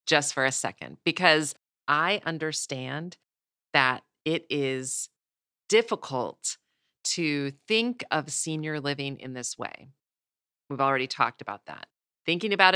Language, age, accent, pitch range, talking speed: English, 40-59, American, 140-185 Hz, 120 wpm